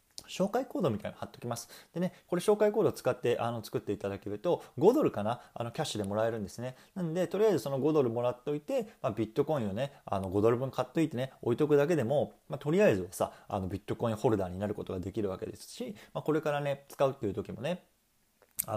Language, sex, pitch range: Japanese, male, 100-150 Hz